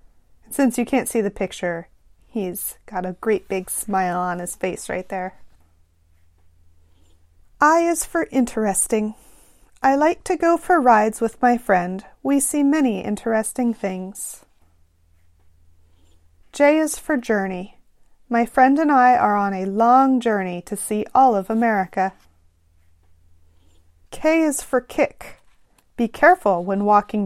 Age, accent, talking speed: 30-49, American, 135 wpm